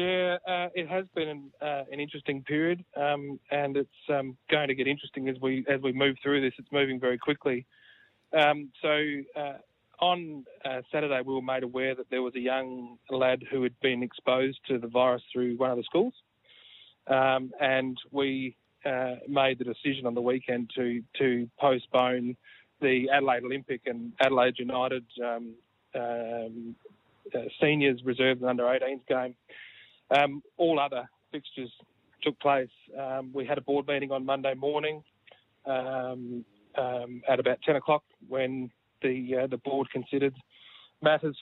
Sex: male